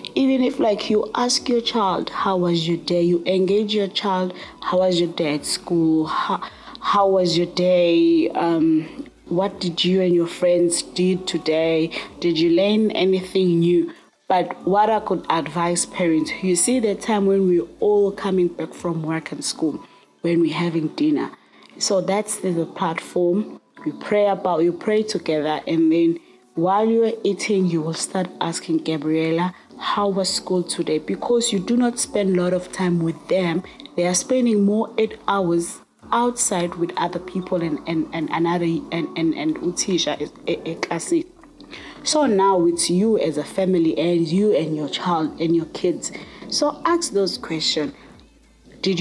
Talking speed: 170 wpm